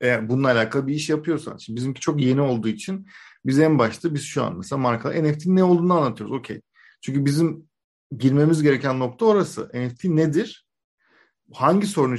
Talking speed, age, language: 170 wpm, 40-59, Turkish